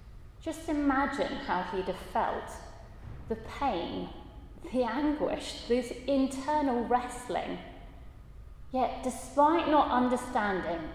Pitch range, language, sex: 200-270 Hz, English, female